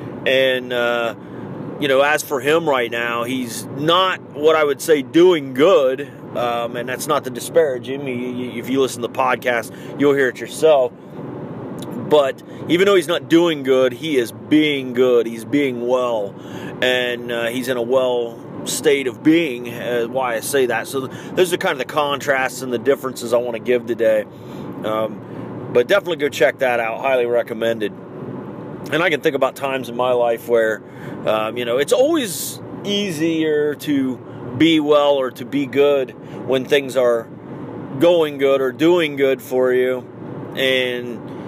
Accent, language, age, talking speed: American, English, 30-49, 175 wpm